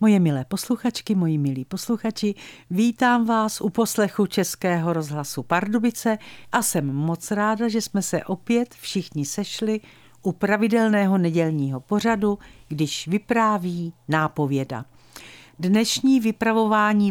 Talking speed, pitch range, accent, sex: 110 wpm, 160-230 Hz, native, female